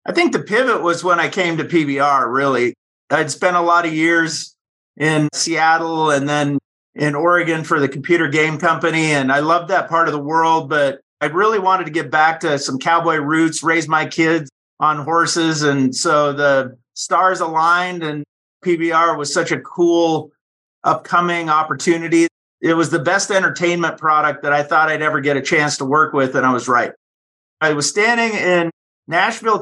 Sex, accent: male, American